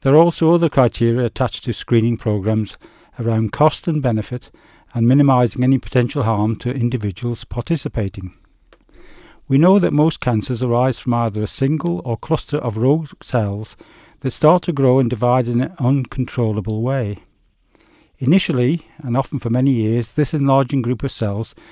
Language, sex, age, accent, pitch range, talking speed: English, male, 50-69, British, 115-145 Hz, 155 wpm